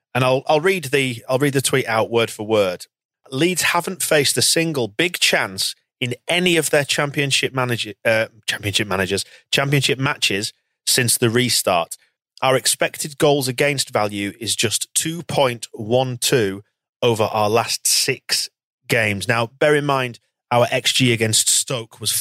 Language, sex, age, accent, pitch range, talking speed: English, male, 30-49, British, 110-135 Hz, 150 wpm